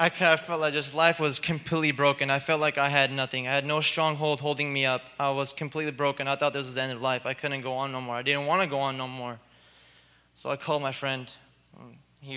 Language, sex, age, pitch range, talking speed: English, male, 20-39, 130-150 Hz, 265 wpm